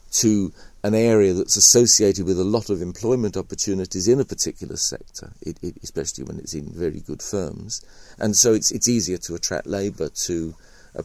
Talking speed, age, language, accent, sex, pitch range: 185 wpm, 50-69, English, British, male, 80-115 Hz